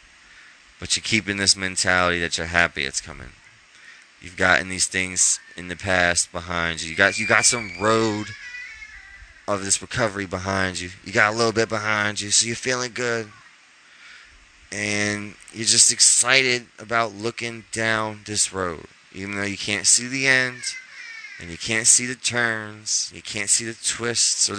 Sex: male